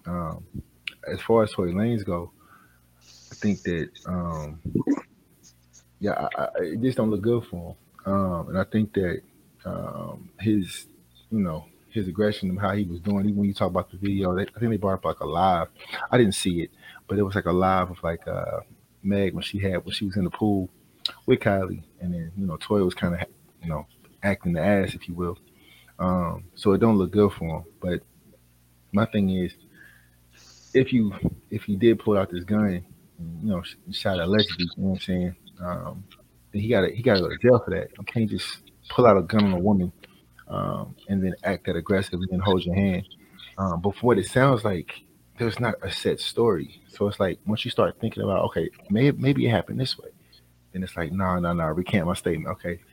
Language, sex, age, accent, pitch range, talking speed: English, male, 30-49, American, 85-105 Hz, 215 wpm